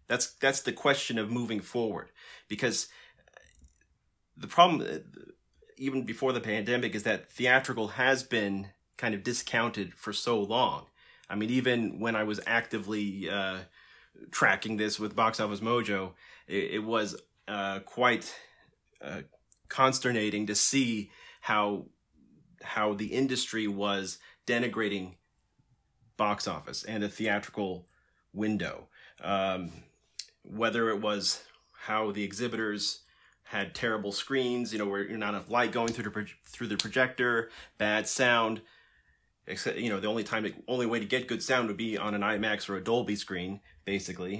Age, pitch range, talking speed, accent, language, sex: 30-49, 100-115 Hz, 145 wpm, American, English, male